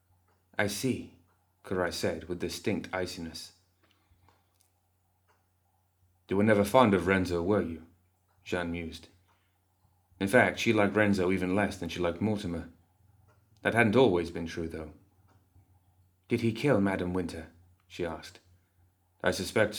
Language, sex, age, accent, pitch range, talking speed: English, male, 30-49, British, 90-100 Hz, 130 wpm